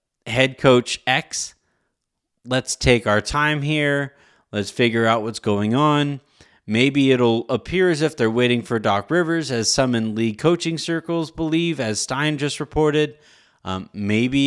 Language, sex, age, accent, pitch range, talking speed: English, male, 30-49, American, 115-155 Hz, 155 wpm